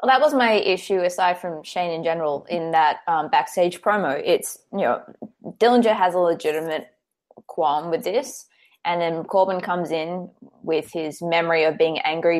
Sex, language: female, English